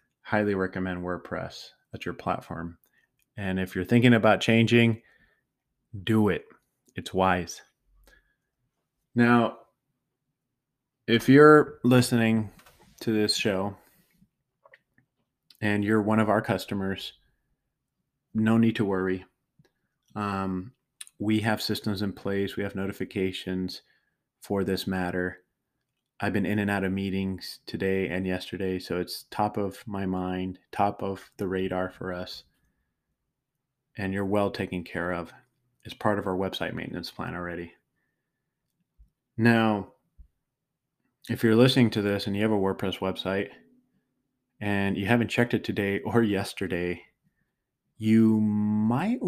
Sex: male